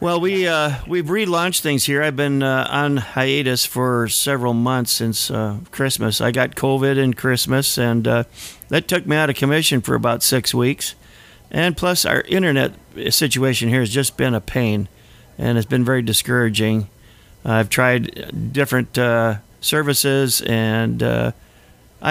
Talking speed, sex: 155 wpm, male